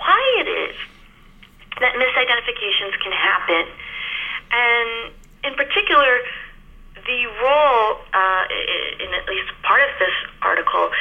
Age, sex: 30-49, female